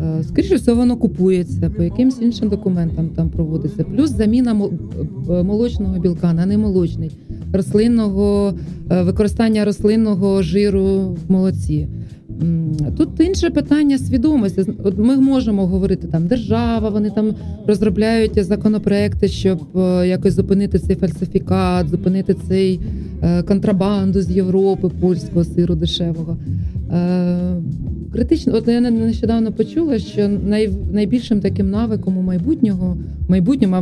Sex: female